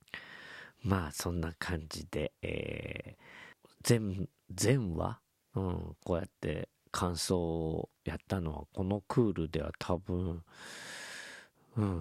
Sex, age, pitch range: male, 40-59, 80-90 Hz